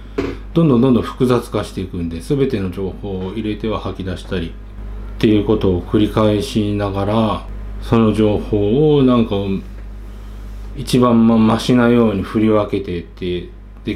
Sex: male